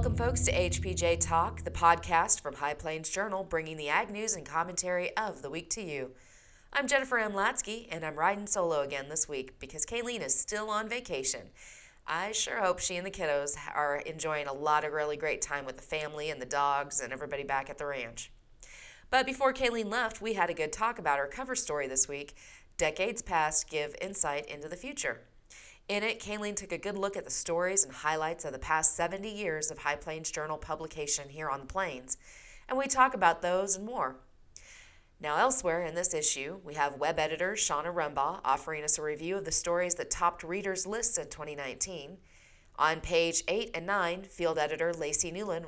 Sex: female